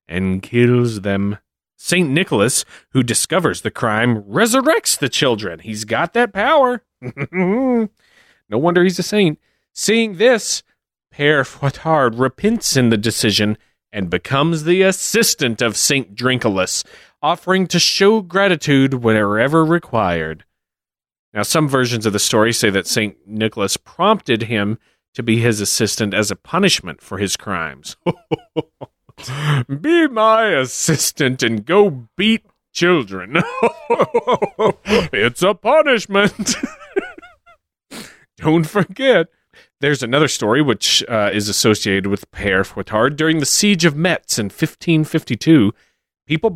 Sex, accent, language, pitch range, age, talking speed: male, American, English, 110-190 Hz, 30-49, 125 wpm